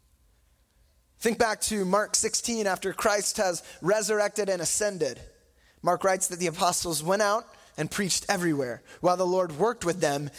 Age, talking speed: 20-39, 155 wpm